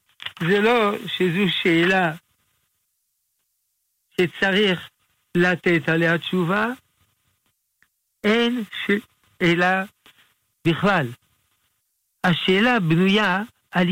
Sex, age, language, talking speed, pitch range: male, 60-79, Hebrew, 60 wpm, 135-210 Hz